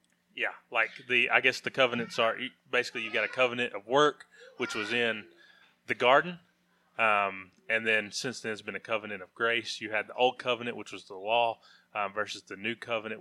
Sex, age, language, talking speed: male, 20-39, English, 205 wpm